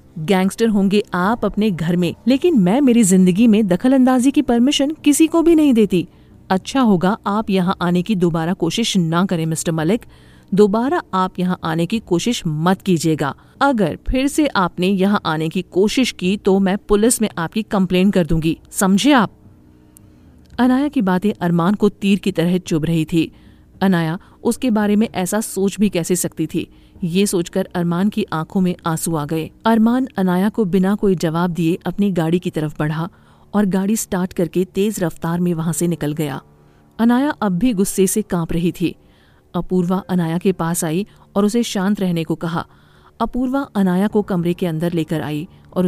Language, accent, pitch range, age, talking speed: Hindi, native, 170-210 Hz, 40-59, 180 wpm